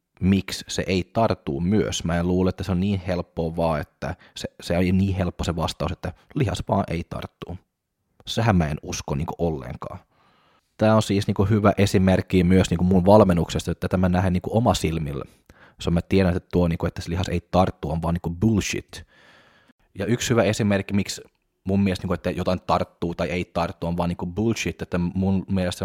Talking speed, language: 195 wpm, Finnish